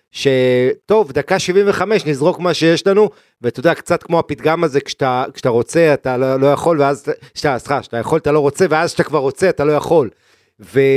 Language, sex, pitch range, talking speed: Hebrew, male, 130-160 Hz, 190 wpm